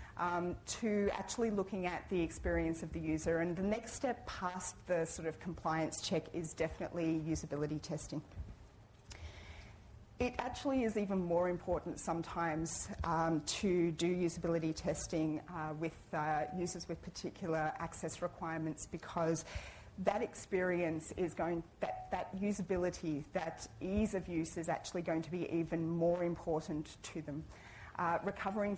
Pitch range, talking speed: 155-180 Hz, 140 wpm